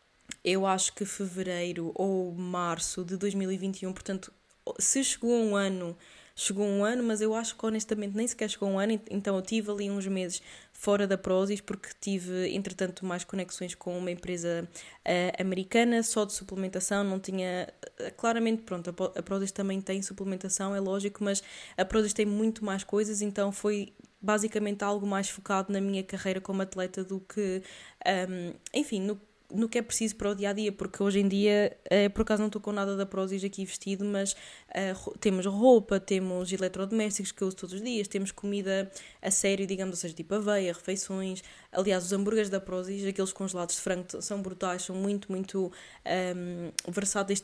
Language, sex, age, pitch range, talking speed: Portuguese, female, 20-39, 190-210 Hz, 175 wpm